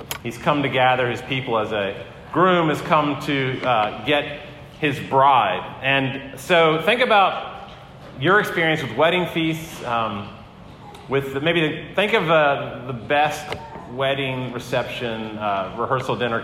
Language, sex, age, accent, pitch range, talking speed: English, male, 30-49, American, 130-165 Hz, 145 wpm